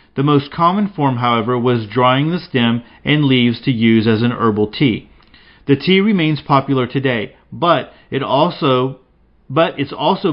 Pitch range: 125-150 Hz